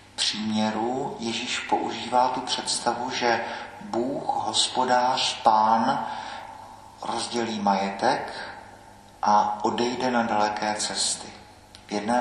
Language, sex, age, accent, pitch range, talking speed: Czech, male, 50-69, native, 105-120 Hz, 90 wpm